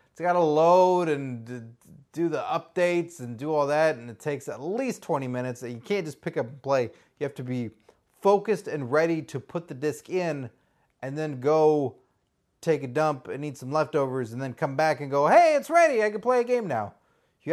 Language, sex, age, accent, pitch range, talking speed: English, male, 30-49, American, 125-180 Hz, 220 wpm